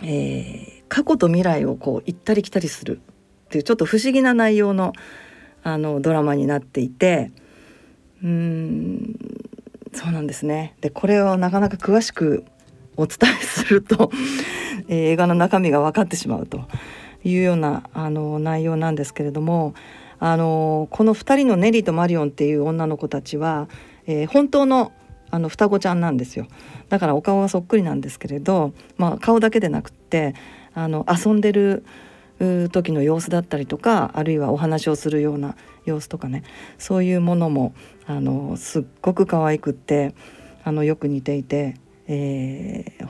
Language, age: Japanese, 40-59